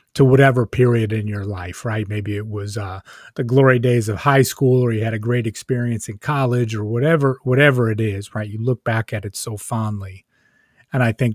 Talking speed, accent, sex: 215 wpm, American, male